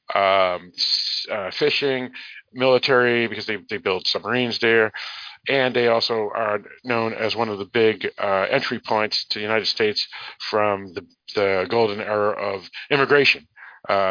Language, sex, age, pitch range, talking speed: English, male, 50-69, 100-125 Hz, 150 wpm